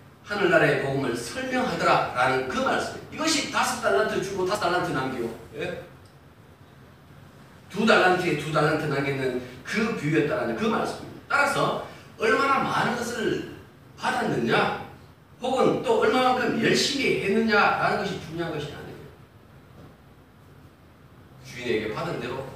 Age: 40-59